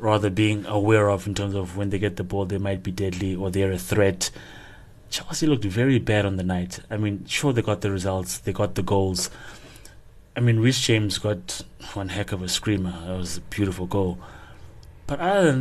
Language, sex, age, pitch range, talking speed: English, male, 20-39, 95-110 Hz, 215 wpm